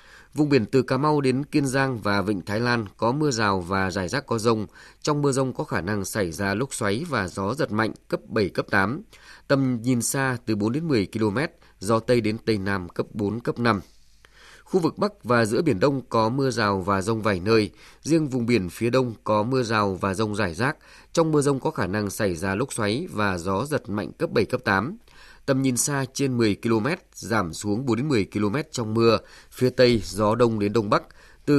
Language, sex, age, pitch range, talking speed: Vietnamese, male, 20-39, 105-135 Hz, 230 wpm